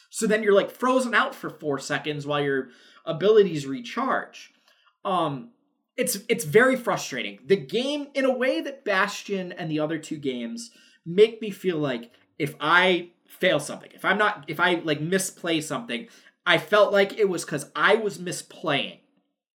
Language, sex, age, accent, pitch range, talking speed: English, male, 20-39, American, 160-225 Hz, 170 wpm